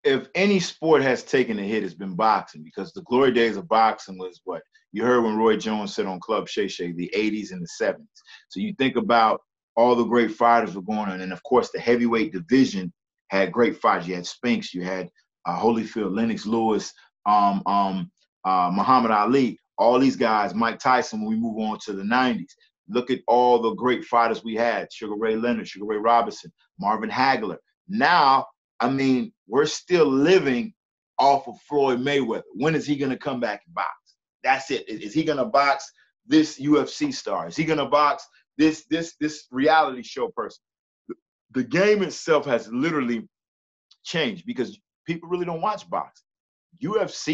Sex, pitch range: male, 110-155 Hz